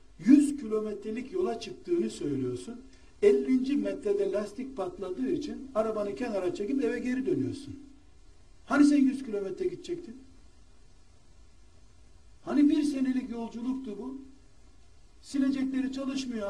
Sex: male